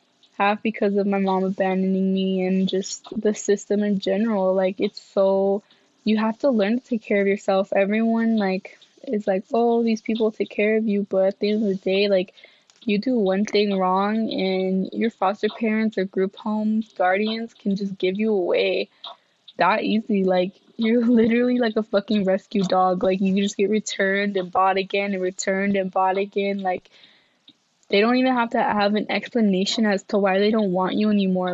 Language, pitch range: English, 190-220 Hz